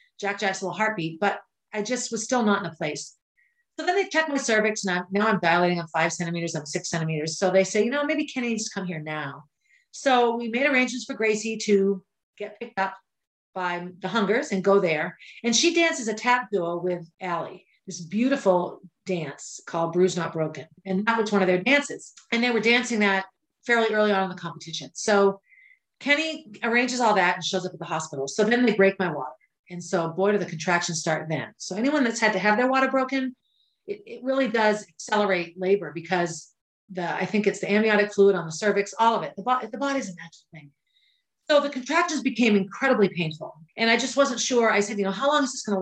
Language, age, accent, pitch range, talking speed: English, 40-59, American, 180-245 Hz, 225 wpm